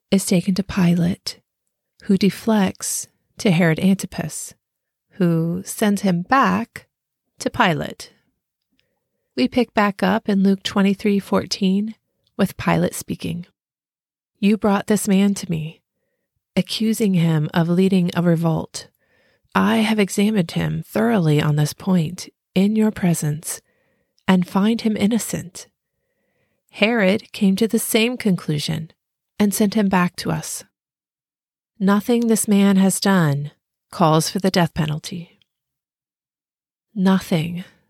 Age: 30-49